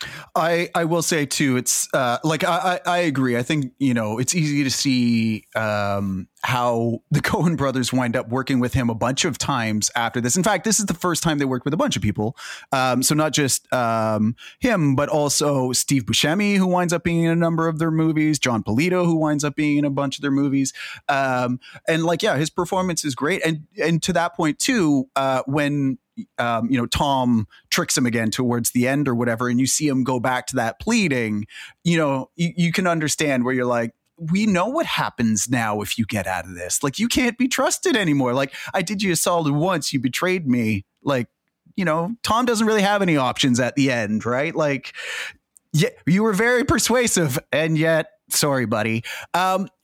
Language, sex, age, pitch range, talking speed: English, male, 30-49, 125-170 Hz, 215 wpm